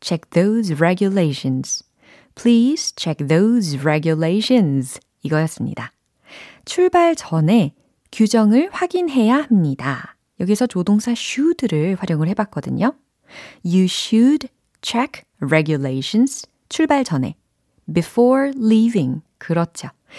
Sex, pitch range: female, 155-245 Hz